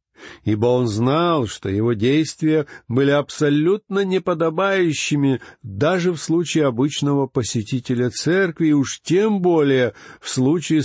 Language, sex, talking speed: Russian, male, 110 wpm